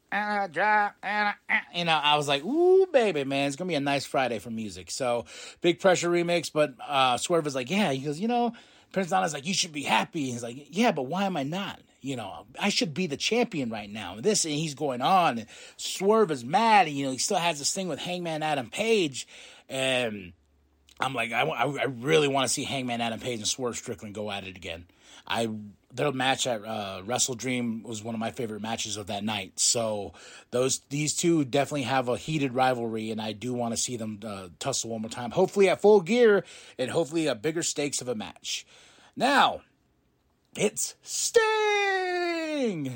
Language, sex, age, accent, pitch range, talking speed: English, male, 30-49, American, 115-170 Hz, 210 wpm